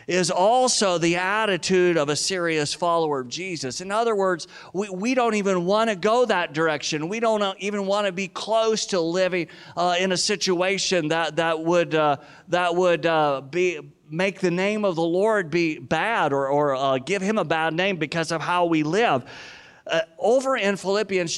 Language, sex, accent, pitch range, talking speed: English, male, American, 155-200 Hz, 190 wpm